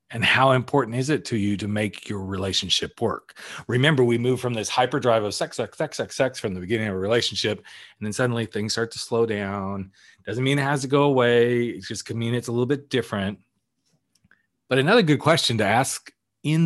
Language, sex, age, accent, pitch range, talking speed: English, male, 40-59, American, 105-140 Hz, 220 wpm